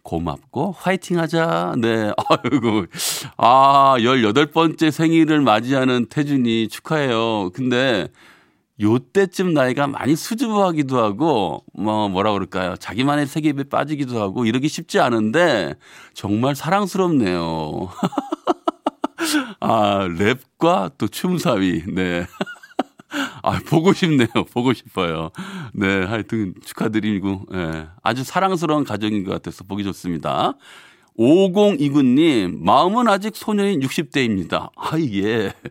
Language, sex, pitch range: Korean, male, 105-165 Hz